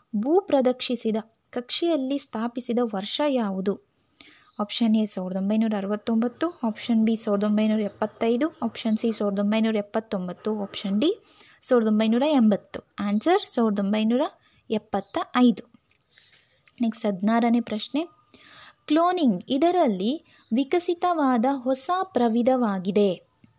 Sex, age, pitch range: female, 20-39, 215-280 Hz